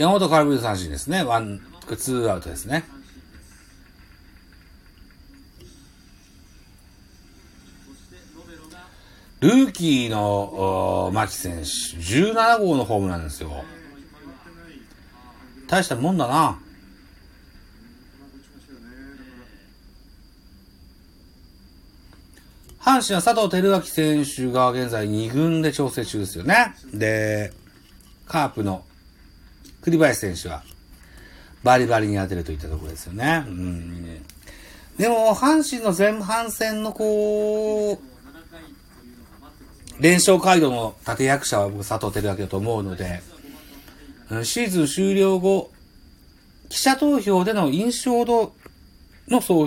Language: Japanese